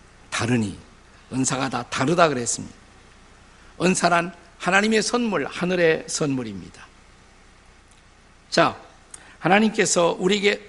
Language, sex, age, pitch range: Korean, male, 50-69, 130-205 Hz